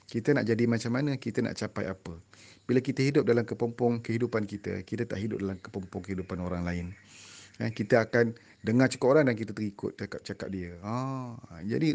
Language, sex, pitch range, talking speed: Malay, male, 100-135 Hz, 185 wpm